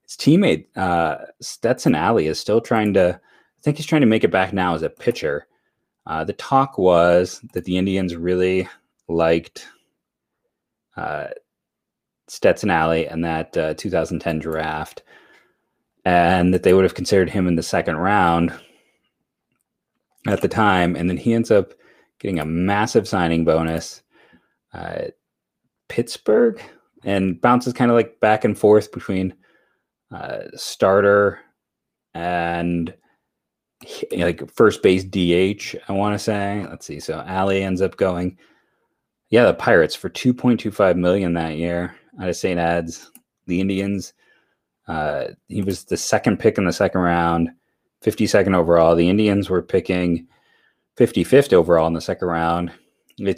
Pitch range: 85-95 Hz